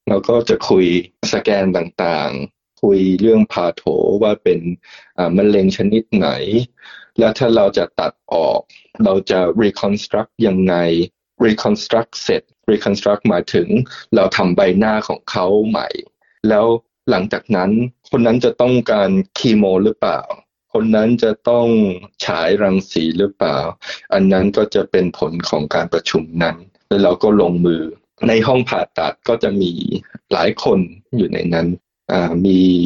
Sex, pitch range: male, 90-110 Hz